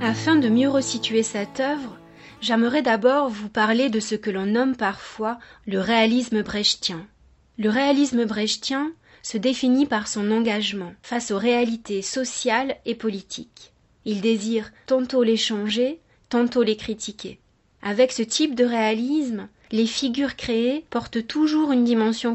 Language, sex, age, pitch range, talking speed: French, female, 30-49, 215-250 Hz, 140 wpm